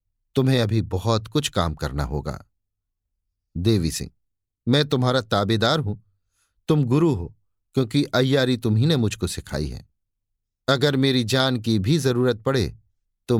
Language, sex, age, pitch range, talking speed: Hindi, male, 50-69, 100-135 Hz, 135 wpm